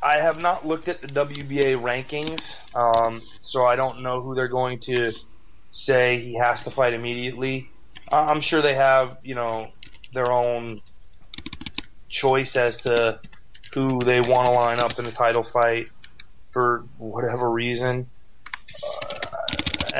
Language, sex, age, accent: English, male, 20-39, American